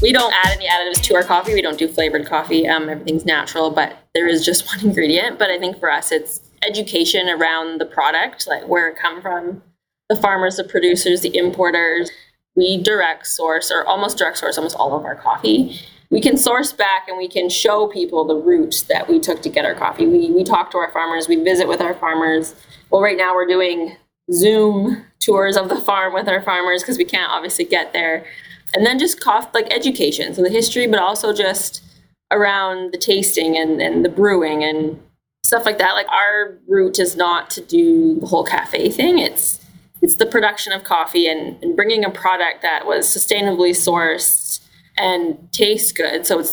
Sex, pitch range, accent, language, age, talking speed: female, 170-215 Hz, American, English, 20-39, 200 wpm